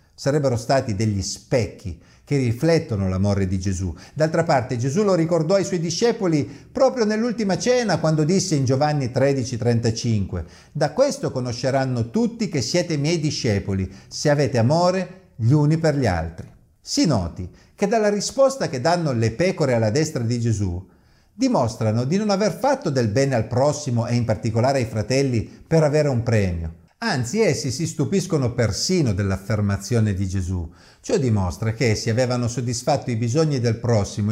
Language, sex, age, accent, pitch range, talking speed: Italian, male, 50-69, native, 110-180 Hz, 155 wpm